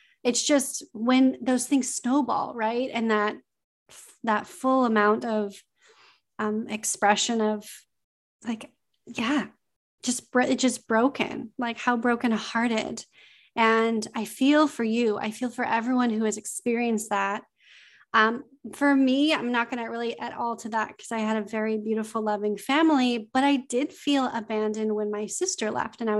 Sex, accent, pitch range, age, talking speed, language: female, American, 220-270 Hz, 30-49, 155 wpm, English